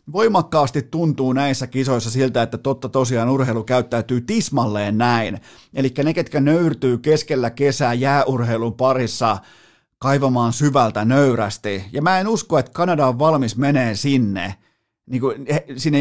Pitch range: 120-150 Hz